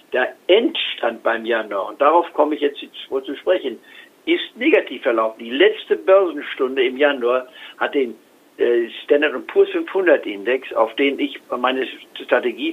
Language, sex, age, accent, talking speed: German, male, 60-79, German, 140 wpm